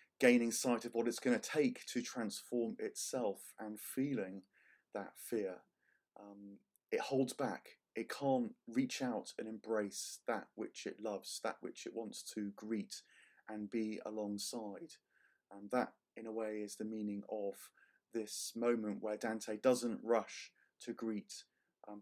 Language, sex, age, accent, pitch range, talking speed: English, male, 30-49, British, 105-125 Hz, 155 wpm